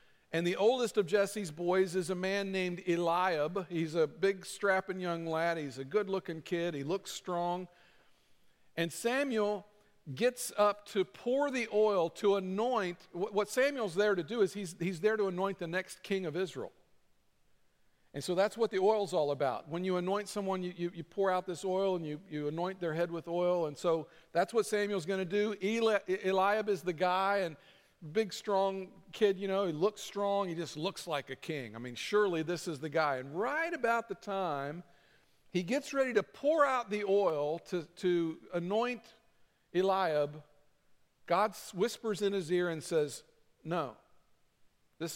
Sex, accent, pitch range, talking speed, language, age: male, American, 165-205 Hz, 180 wpm, English, 50-69